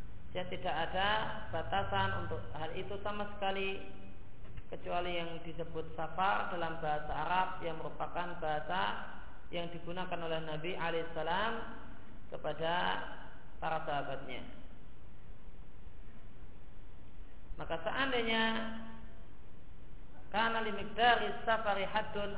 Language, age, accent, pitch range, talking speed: Indonesian, 40-59, native, 155-200 Hz, 90 wpm